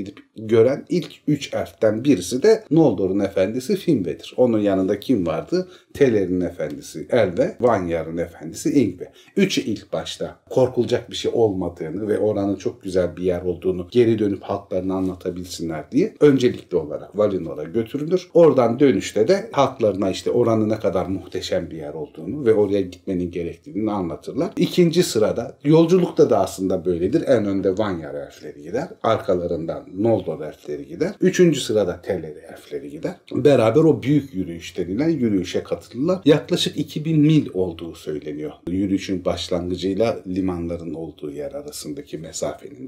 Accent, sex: native, male